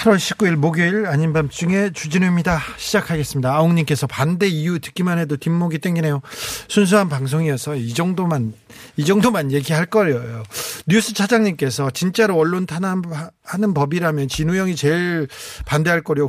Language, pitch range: Korean, 140-205 Hz